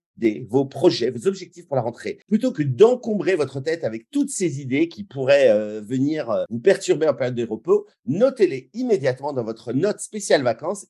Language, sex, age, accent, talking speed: French, male, 50-69, French, 185 wpm